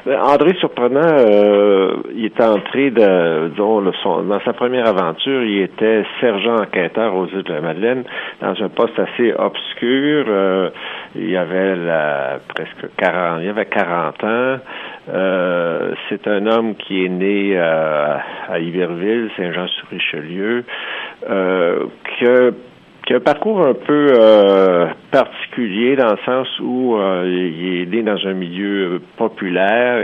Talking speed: 140 wpm